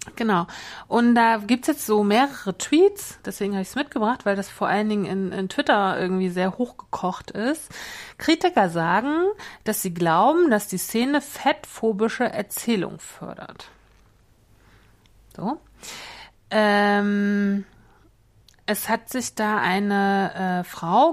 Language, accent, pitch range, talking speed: German, German, 185-230 Hz, 130 wpm